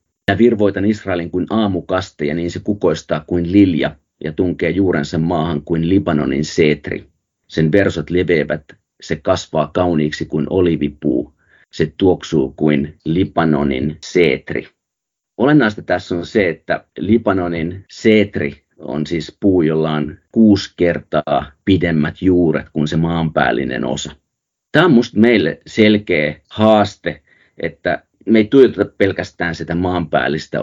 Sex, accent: male, native